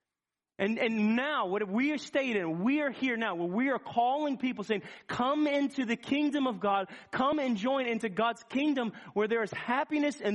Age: 30-49